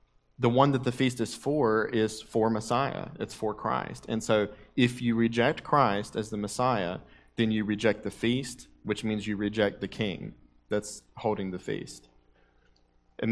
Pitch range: 90-120 Hz